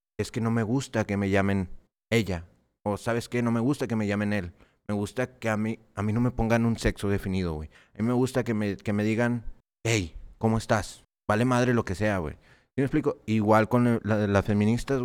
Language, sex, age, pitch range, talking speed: Spanish, male, 30-49, 100-120 Hz, 245 wpm